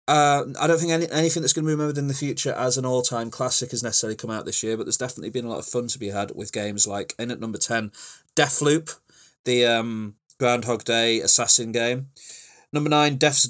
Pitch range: 110-130 Hz